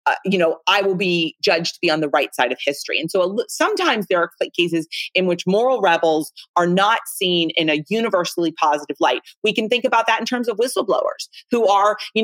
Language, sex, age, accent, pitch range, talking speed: English, female, 30-49, American, 160-210 Hz, 225 wpm